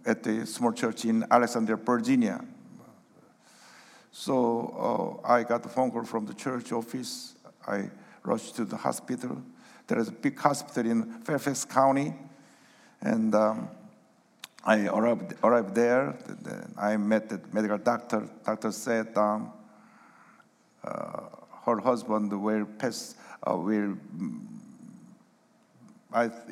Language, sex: English, male